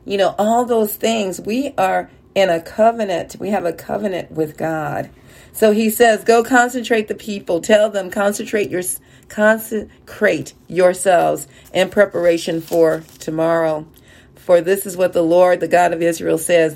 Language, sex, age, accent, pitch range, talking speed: English, female, 40-59, American, 160-195 Hz, 150 wpm